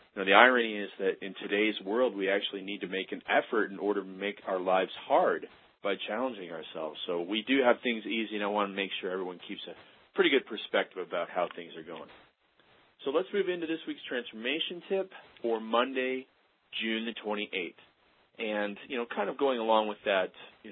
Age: 40-59